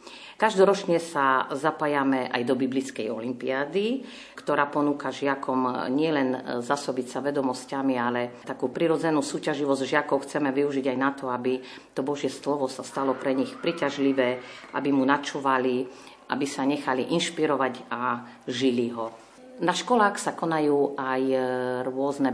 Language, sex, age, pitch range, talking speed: Slovak, female, 50-69, 125-155 Hz, 130 wpm